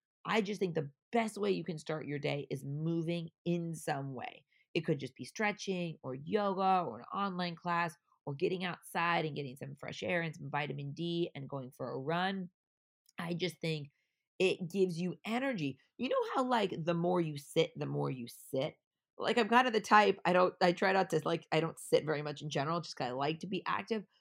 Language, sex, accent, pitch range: English, female, American, 155-195 Hz